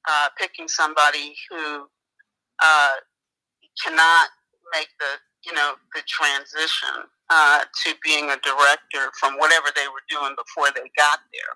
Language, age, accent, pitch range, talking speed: English, 40-59, American, 145-170 Hz, 135 wpm